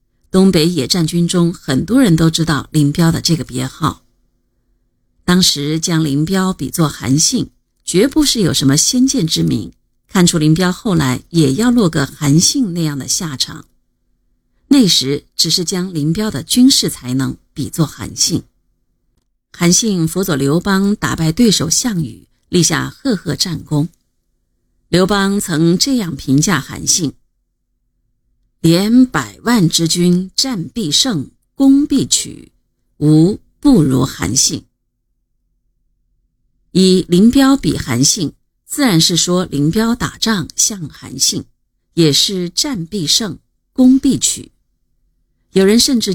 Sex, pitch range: female, 145-205 Hz